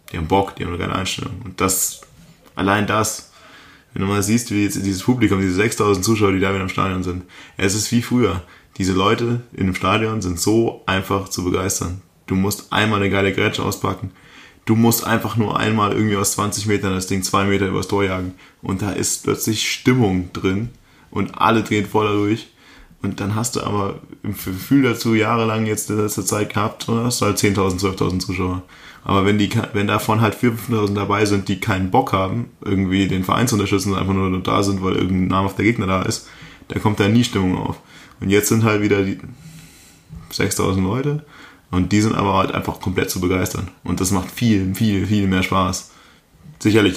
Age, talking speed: 20-39, 205 wpm